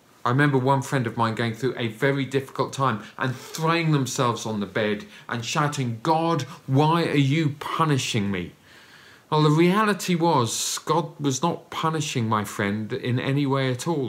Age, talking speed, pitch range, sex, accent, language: 40-59, 175 wpm, 115-150 Hz, male, British, English